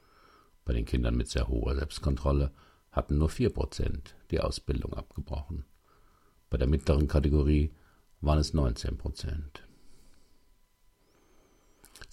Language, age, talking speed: German, 50-69, 100 wpm